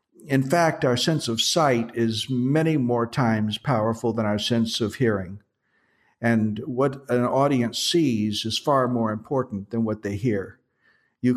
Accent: American